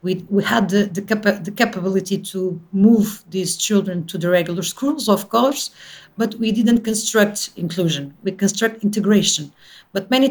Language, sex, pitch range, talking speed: English, female, 170-205 Hz, 150 wpm